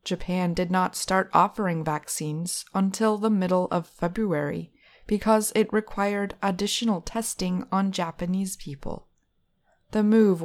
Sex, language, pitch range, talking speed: female, English, 165-210 Hz, 120 wpm